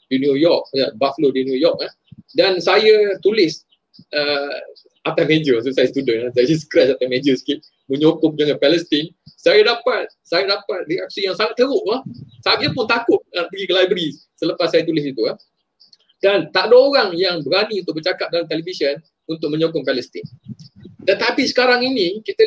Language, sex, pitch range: Malay, male, 155-240 Hz